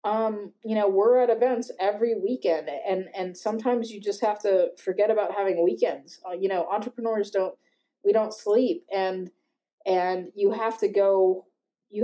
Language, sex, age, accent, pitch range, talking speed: English, female, 20-39, American, 180-210 Hz, 170 wpm